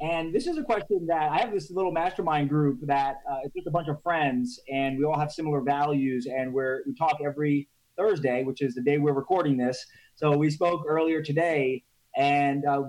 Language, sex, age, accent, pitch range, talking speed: English, male, 20-39, American, 140-165 Hz, 215 wpm